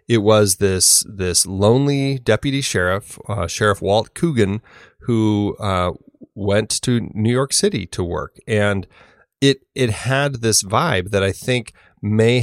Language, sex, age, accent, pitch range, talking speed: English, male, 30-49, American, 90-110 Hz, 145 wpm